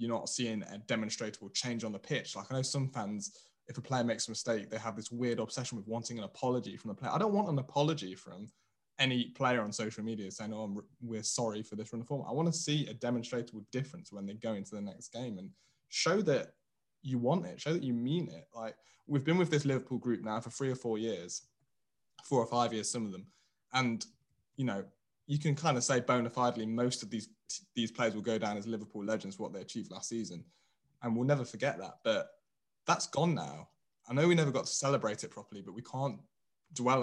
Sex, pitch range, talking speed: male, 110-140 Hz, 235 wpm